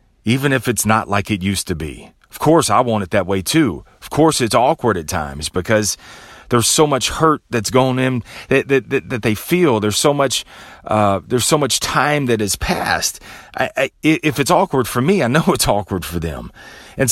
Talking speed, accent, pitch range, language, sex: 215 wpm, American, 85-120 Hz, English, male